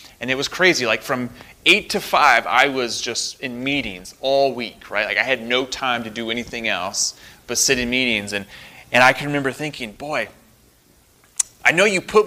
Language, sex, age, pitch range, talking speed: English, male, 30-49, 115-155 Hz, 200 wpm